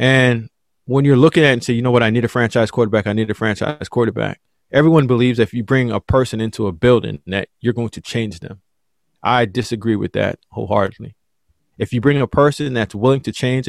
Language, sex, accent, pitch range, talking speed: English, male, American, 110-135 Hz, 230 wpm